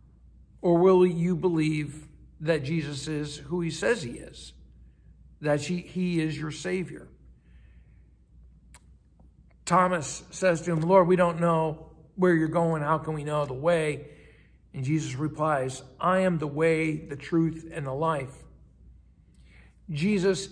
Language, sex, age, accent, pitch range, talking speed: English, male, 60-79, American, 145-180 Hz, 140 wpm